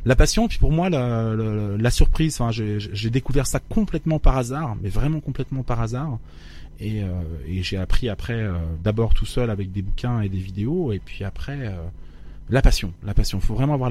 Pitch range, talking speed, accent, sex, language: 95-120 Hz, 210 wpm, French, male, French